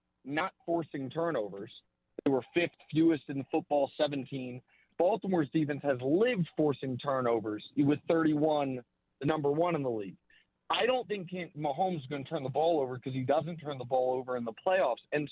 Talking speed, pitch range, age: 190 wpm, 140-175 Hz, 40-59